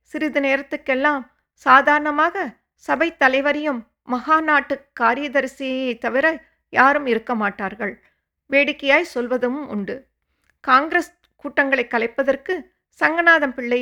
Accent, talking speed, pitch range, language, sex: Indian, 80 wpm, 245-295 Hz, English, female